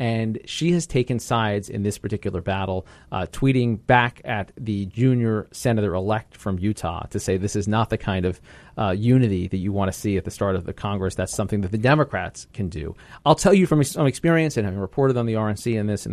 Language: English